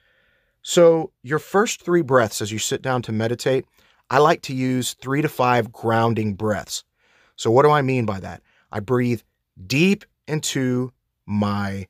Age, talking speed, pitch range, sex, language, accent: 30-49, 160 wpm, 105-135 Hz, male, English, American